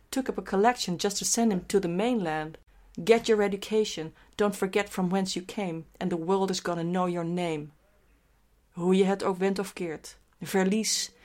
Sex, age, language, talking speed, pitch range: female, 40-59, Dutch, 190 wpm, 175-215 Hz